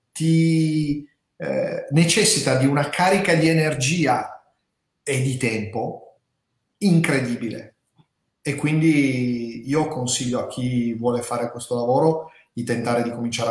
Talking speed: 115 wpm